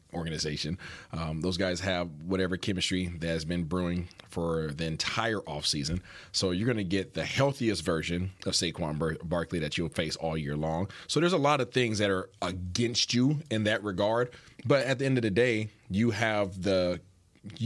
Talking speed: 185 wpm